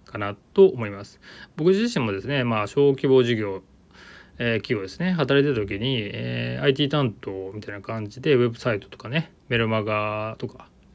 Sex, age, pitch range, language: male, 20-39, 105-140 Hz, Japanese